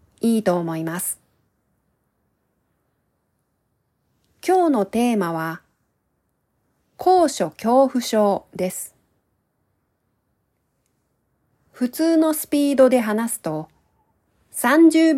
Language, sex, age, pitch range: Japanese, female, 40-59, 185-285 Hz